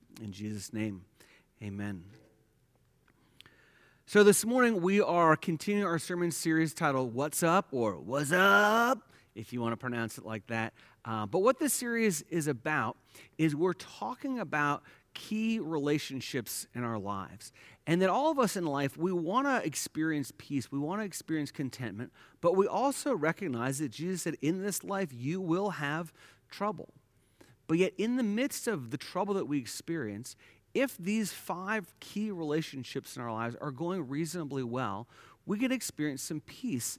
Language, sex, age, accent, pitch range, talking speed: English, male, 30-49, American, 125-190 Hz, 165 wpm